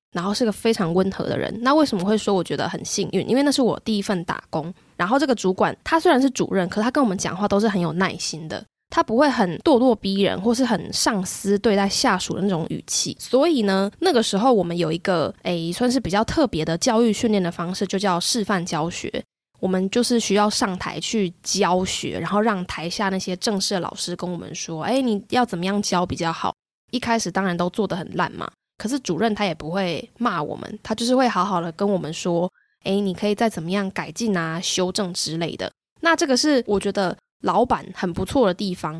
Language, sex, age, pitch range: Chinese, female, 10-29, 180-230 Hz